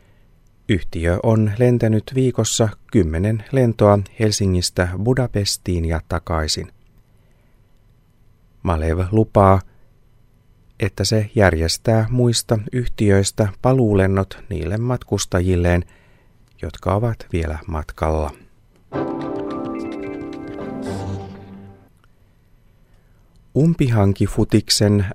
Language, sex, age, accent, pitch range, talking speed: Finnish, male, 30-49, native, 90-115 Hz, 60 wpm